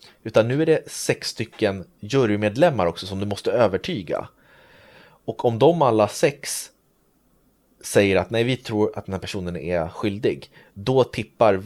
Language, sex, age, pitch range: Swedish, male, 30-49, 100-125 Hz